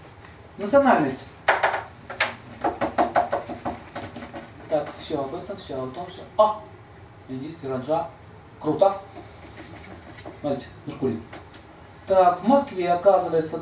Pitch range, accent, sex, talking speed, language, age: 120-195 Hz, native, male, 85 wpm, Russian, 40-59